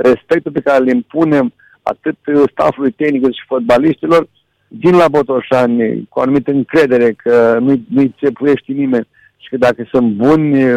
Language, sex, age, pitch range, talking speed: Romanian, male, 60-79, 130-155 Hz, 145 wpm